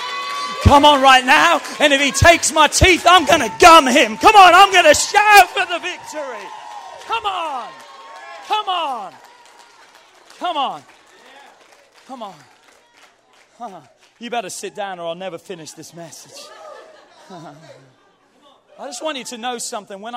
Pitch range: 200-295 Hz